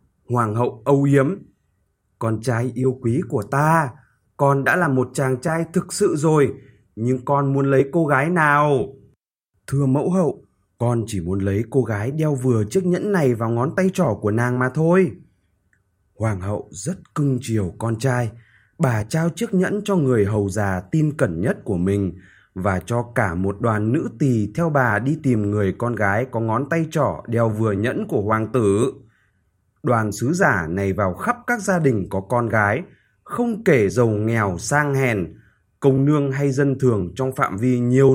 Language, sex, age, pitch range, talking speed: Vietnamese, male, 20-39, 105-145 Hz, 185 wpm